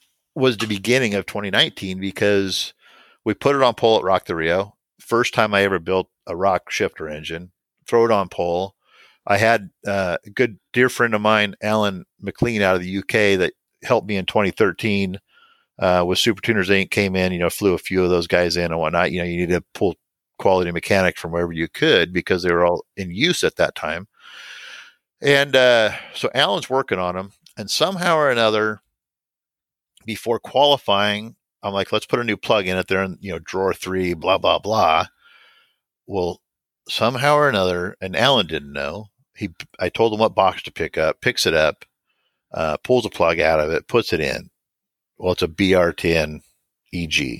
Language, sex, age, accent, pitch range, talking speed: English, male, 50-69, American, 90-110 Hz, 190 wpm